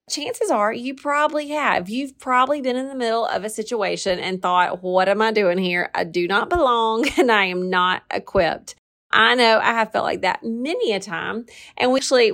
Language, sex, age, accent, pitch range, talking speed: English, female, 30-49, American, 185-230 Hz, 205 wpm